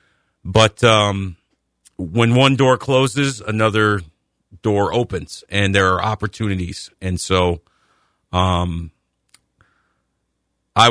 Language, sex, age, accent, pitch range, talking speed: English, male, 40-59, American, 95-120 Hz, 95 wpm